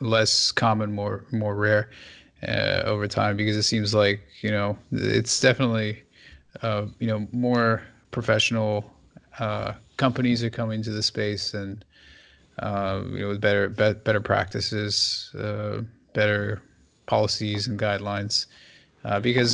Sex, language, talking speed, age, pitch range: male, English, 135 wpm, 30-49, 100-115 Hz